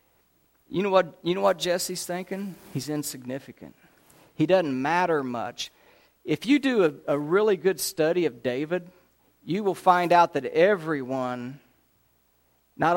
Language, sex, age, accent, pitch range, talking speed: English, male, 50-69, American, 135-175 Hz, 145 wpm